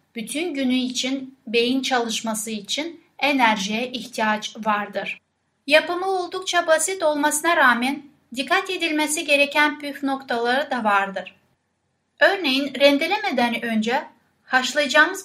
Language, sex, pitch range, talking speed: Turkish, female, 235-295 Hz, 100 wpm